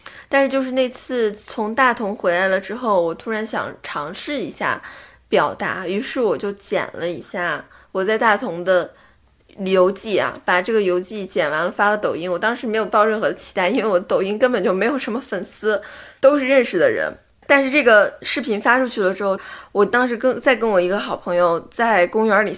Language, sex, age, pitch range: Chinese, female, 20-39, 195-245 Hz